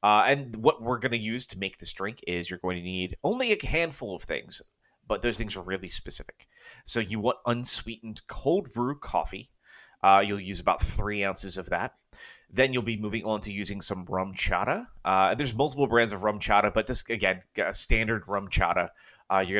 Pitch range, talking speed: 95-115 Hz, 210 wpm